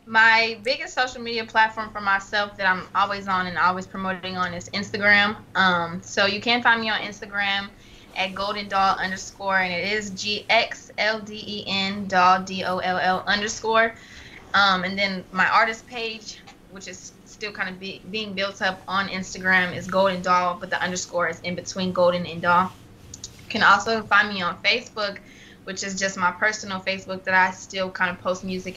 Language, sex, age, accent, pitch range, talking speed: English, female, 20-39, American, 180-210 Hz, 190 wpm